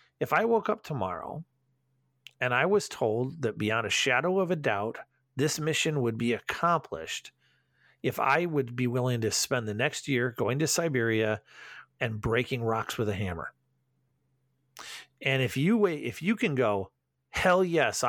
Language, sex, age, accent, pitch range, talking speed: English, male, 40-59, American, 125-170 Hz, 165 wpm